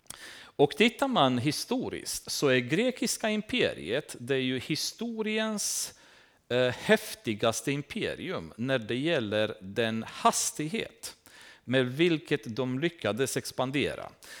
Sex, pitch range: male, 125-185 Hz